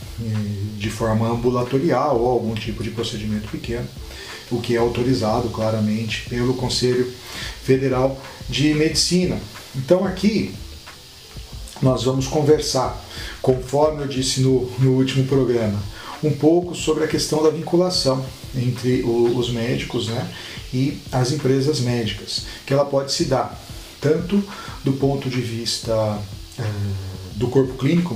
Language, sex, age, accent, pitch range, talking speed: Portuguese, male, 40-59, Brazilian, 110-135 Hz, 130 wpm